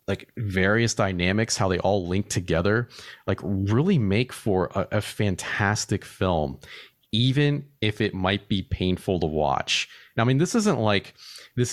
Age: 30-49